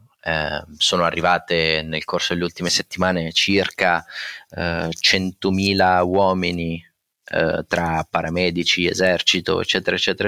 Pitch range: 80-90 Hz